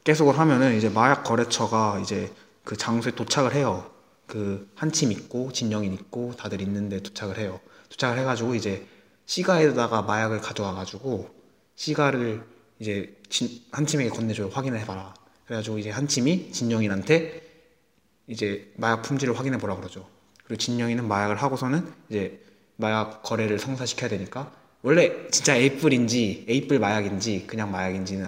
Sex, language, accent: male, Korean, native